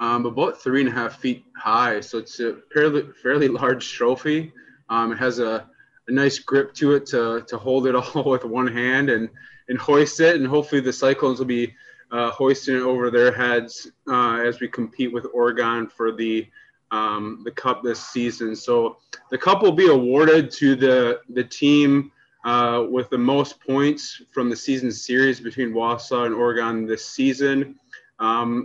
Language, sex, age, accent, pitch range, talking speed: English, male, 20-39, American, 120-145 Hz, 180 wpm